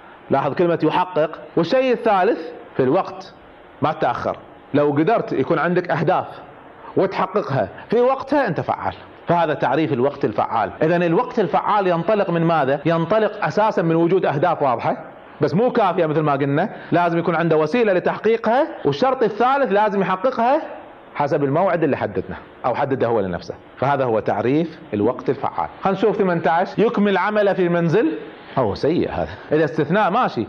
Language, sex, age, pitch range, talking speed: Arabic, male, 40-59, 145-195 Hz, 150 wpm